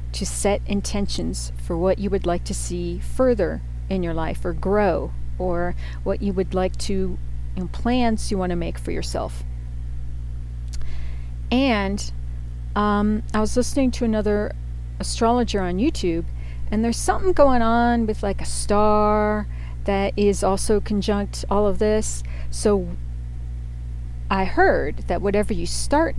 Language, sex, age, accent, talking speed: English, female, 40-59, American, 145 wpm